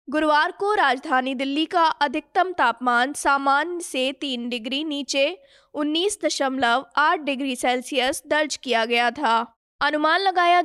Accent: native